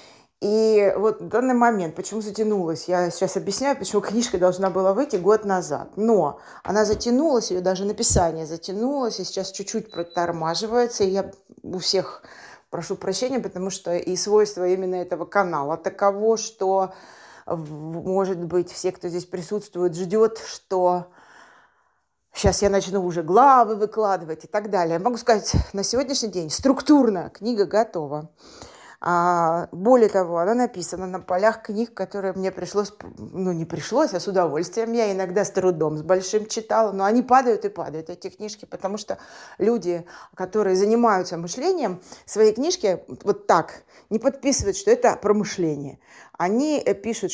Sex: female